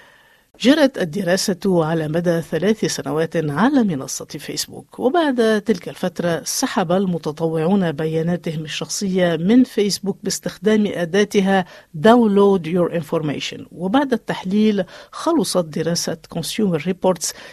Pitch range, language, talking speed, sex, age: 170-215 Hz, Arabic, 100 wpm, female, 50-69